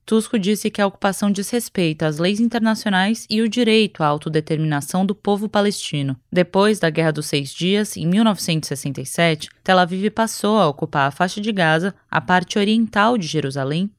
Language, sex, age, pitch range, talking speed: Portuguese, female, 20-39, 165-215 Hz, 165 wpm